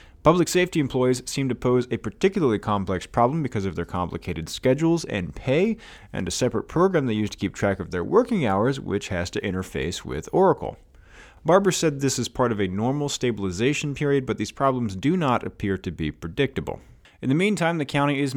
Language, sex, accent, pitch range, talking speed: English, male, American, 90-135 Hz, 200 wpm